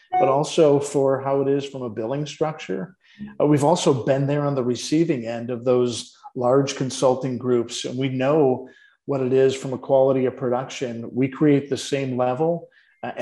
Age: 50-69